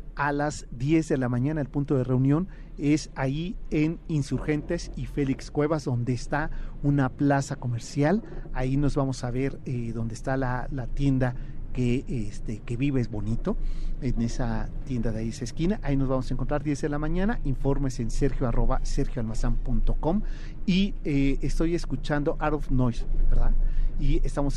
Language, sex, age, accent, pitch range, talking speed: Spanish, male, 40-59, Mexican, 130-170 Hz, 170 wpm